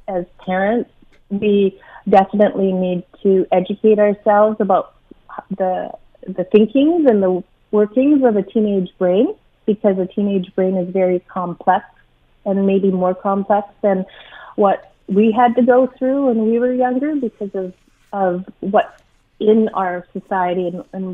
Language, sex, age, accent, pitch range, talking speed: English, female, 30-49, American, 185-220 Hz, 140 wpm